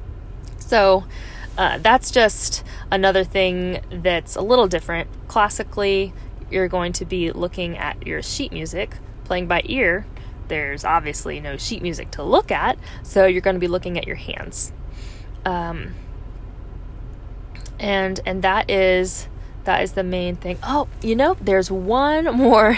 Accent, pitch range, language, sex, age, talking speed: American, 170-195 Hz, English, female, 20-39, 150 wpm